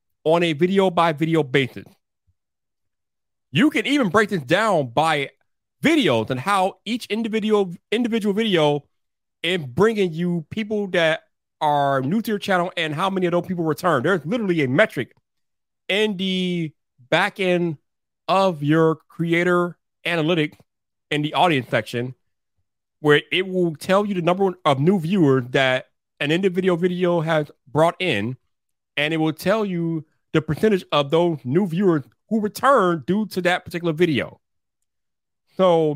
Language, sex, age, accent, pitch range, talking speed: English, male, 30-49, American, 150-195 Hz, 145 wpm